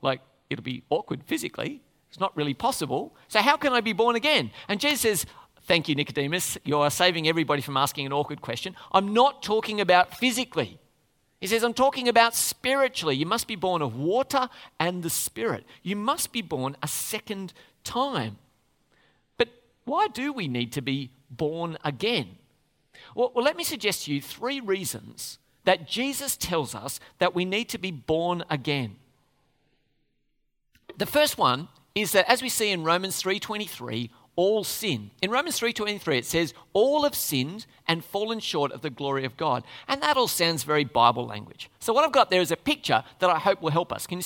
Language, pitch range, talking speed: English, 145-235 Hz, 185 wpm